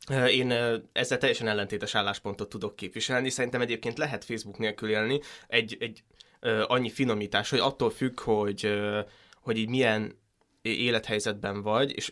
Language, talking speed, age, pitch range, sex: Hungarian, 135 wpm, 20-39, 105-120 Hz, male